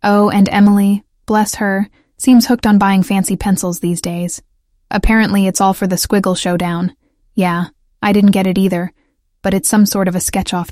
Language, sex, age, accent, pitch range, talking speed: English, female, 10-29, American, 190-210 Hz, 185 wpm